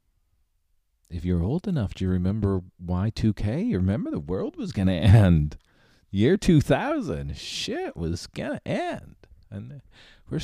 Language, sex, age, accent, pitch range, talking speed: English, male, 40-59, American, 80-110 Hz, 145 wpm